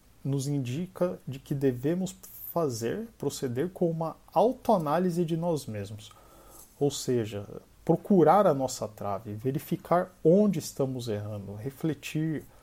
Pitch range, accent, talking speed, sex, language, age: 115-160 Hz, Brazilian, 115 wpm, male, Portuguese, 50-69